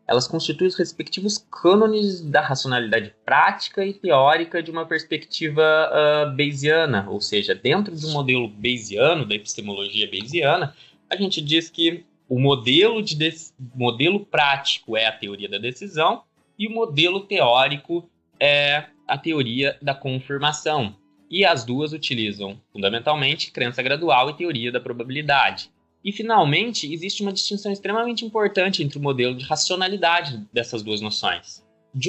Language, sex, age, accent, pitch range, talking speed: Portuguese, male, 20-39, Brazilian, 115-175 Hz, 135 wpm